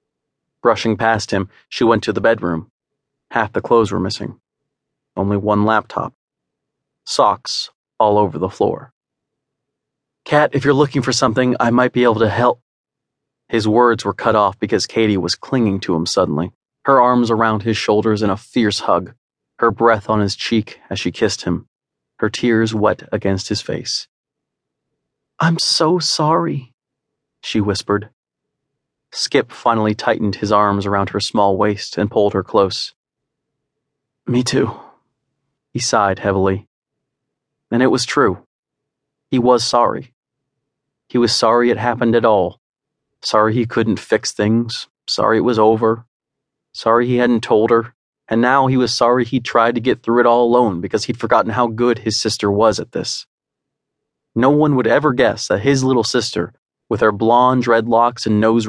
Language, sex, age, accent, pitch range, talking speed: English, male, 30-49, American, 110-130 Hz, 160 wpm